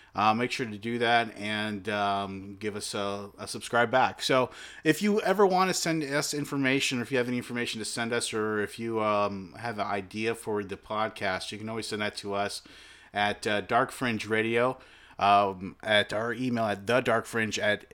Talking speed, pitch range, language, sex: 205 wpm, 100-120 Hz, English, male